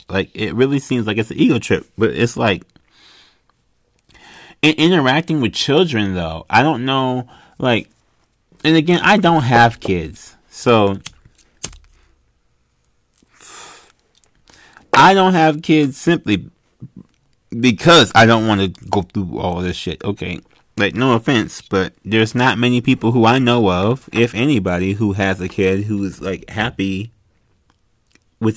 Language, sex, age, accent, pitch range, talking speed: English, male, 30-49, American, 95-135 Hz, 140 wpm